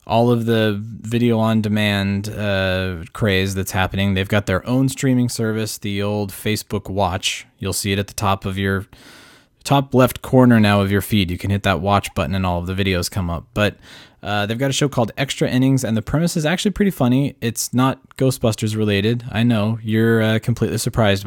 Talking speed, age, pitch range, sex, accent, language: 210 wpm, 20-39, 100-125 Hz, male, American, English